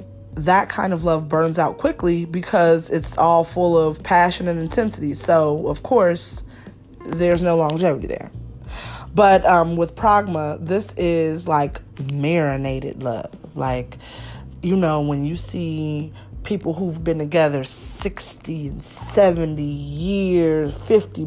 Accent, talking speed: American, 130 wpm